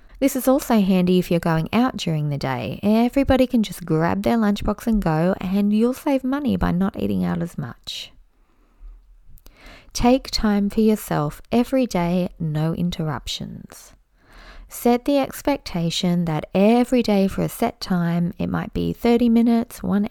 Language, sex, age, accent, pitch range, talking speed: English, female, 20-39, Australian, 175-245 Hz, 160 wpm